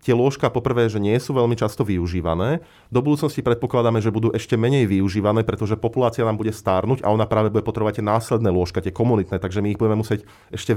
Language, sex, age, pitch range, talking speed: Slovak, male, 30-49, 105-120 Hz, 210 wpm